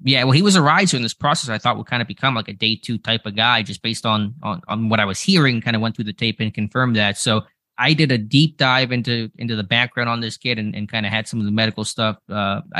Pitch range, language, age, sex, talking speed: 110-125 Hz, English, 20-39, male, 300 wpm